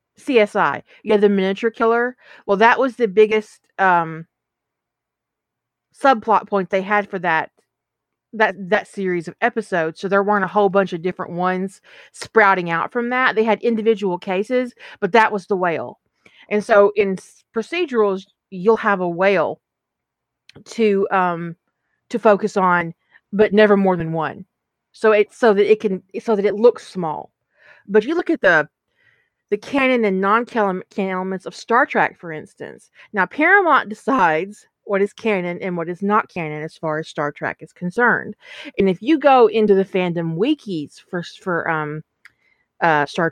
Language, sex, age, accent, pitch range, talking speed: English, female, 30-49, American, 180-225 Hz, 170 wpm